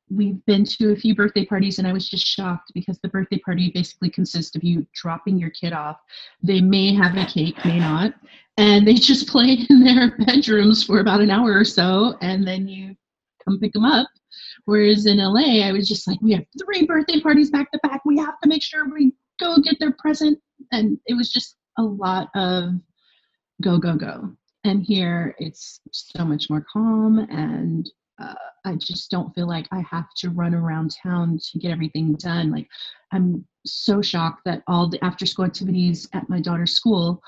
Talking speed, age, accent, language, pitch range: 200 wpm, 30-49, American, English, 170-215 Hz